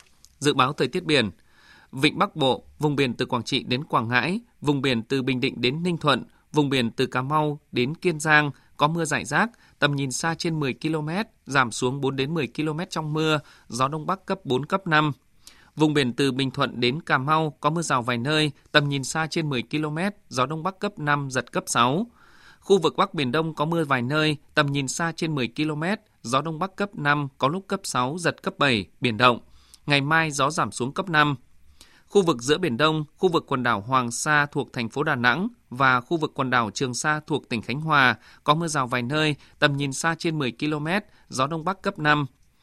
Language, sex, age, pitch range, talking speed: Vietnamese, male, 20-39, 130-160 Hz, 230 wpm